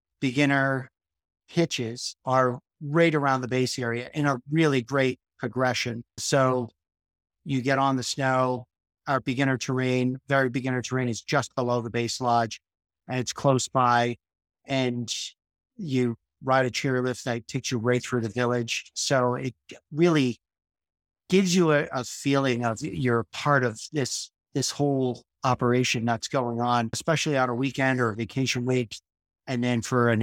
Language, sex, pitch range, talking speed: English, male, 115-135 Hz, 155 wpm